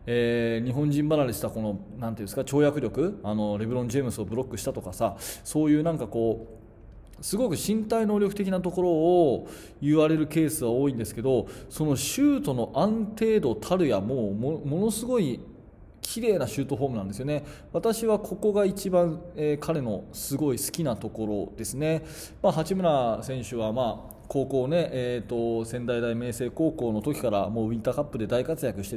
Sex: male